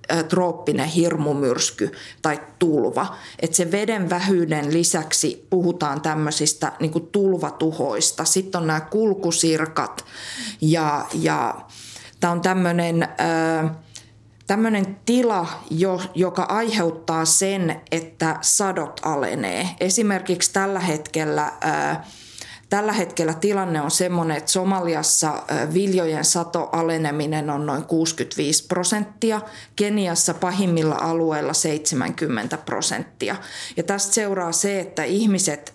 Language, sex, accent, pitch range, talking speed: Finnish, female, native, 155-185 Hz, 95 wpm